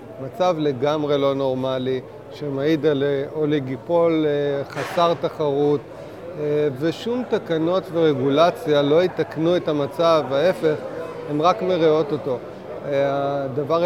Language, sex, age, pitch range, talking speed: Hebrew, male, 30-49, 140-160 Hz, 95 wpm